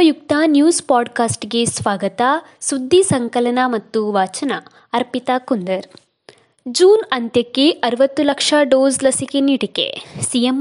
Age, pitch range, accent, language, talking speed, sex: 20-39, 240-320 Hz, native, Kannada, 100 wpm, female